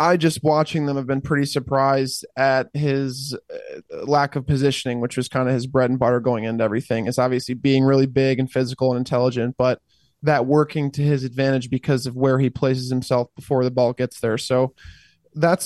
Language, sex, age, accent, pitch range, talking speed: English, male, 20-39, American, 125-145 Hz, 205 wpm